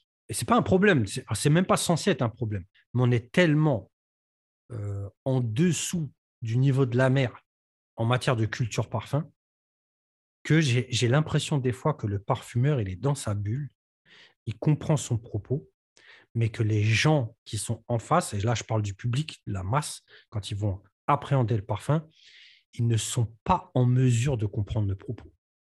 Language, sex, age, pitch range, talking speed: French, male, 40-59, 110-145 Hz, 185 wpm